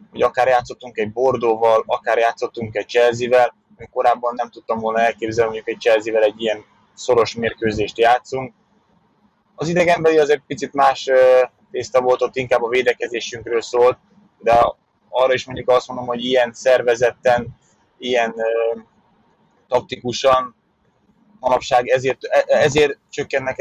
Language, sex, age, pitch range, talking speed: Hungarian, male, 20-39, 120-135 Hz, 125 wpm